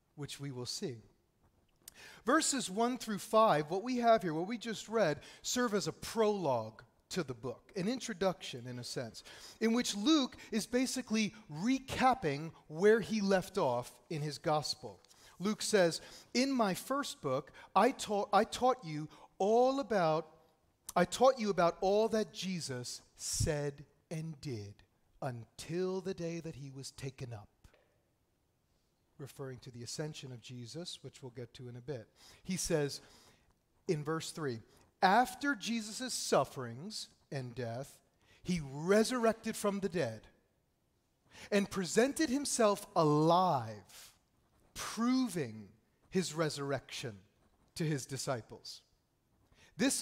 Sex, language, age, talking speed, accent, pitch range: male, English, 40-59, 135 wpm, American, 135-215 Hz